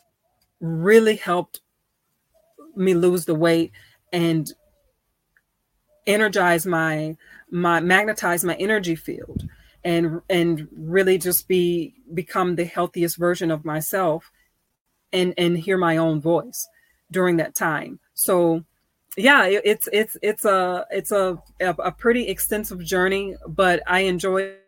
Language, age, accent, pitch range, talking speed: English, 30-49, American, 170-195 Hz, 120 wpm